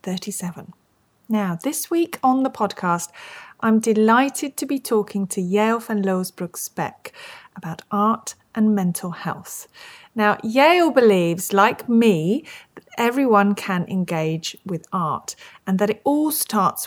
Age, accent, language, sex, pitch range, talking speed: 40-59, British, English, female, 175-250 Hz, 135 wpm